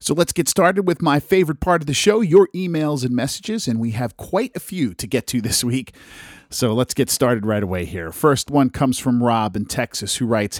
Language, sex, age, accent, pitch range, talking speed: English, male, 40-59, American, 110-150 Hz, 240 wpm